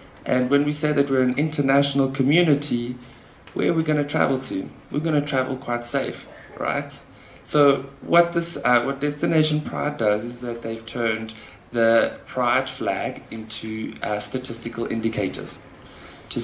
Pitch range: 115-145 Hz